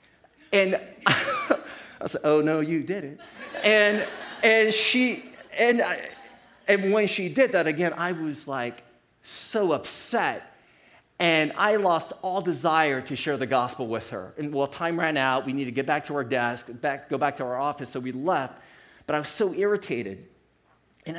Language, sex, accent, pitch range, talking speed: English, male, American, 140-190 Hz, 180 wpm